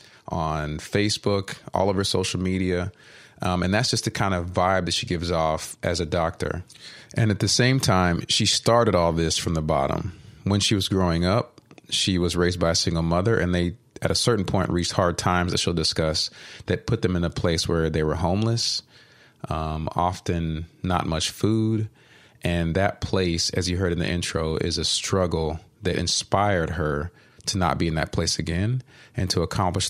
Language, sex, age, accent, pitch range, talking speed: English, male, 30-49, American, 85-105 Hz, 195 wpm